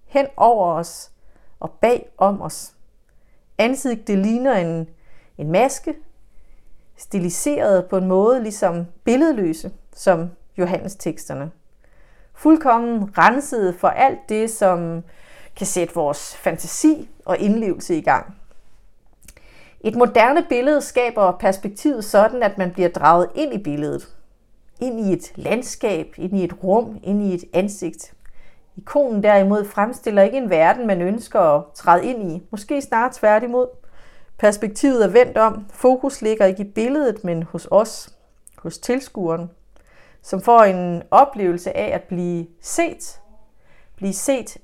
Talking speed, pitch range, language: 135 wpm, 180-245 Hz, English